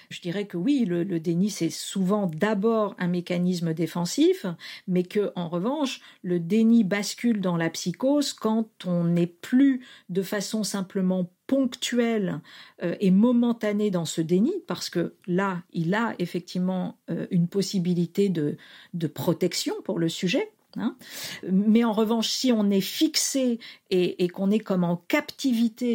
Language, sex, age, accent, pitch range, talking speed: French, female, 50-69, French, 175-230 Hz, 150 wpm